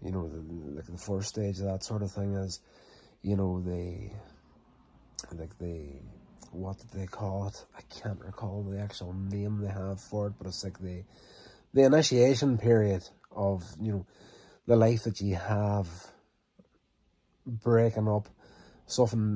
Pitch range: 95-115 Hz